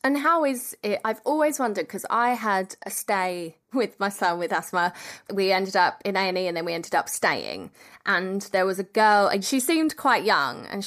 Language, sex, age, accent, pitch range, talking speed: English, female, 20-39, British, 185-220 Hz, 215 wpm